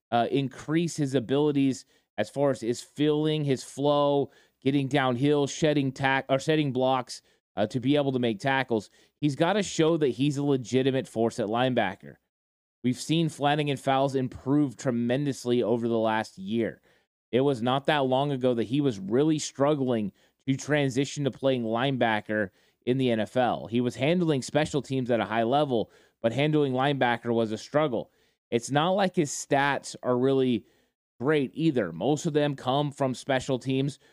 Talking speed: 170 wpm